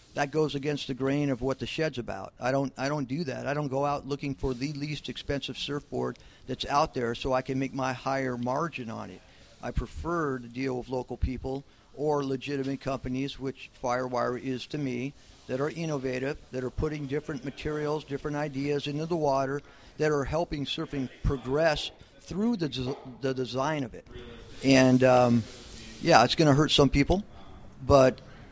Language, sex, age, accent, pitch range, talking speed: English, male, 50-69, American, 125-150 Hz, 185 wpm